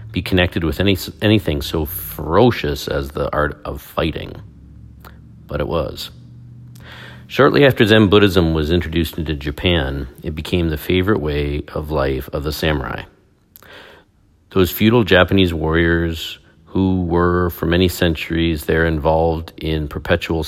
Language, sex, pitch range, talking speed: English, male, 75-95 Hz, 130 wpm